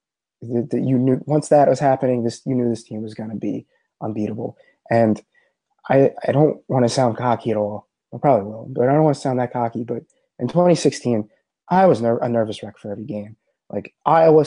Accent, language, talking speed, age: American, English, 215 wpm, 20-39